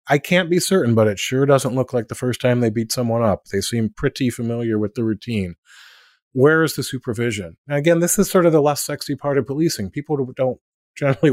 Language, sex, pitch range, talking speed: English, male, 100-135 Hz, 230 wpm